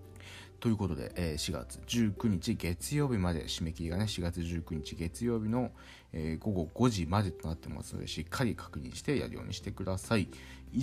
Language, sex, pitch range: Japanese, male, 85-120 Hz